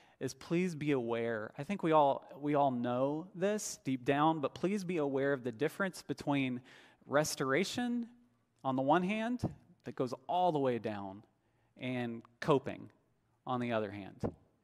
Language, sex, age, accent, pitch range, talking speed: English, male, 30-49, American, 120-165 Hz, 160 wpm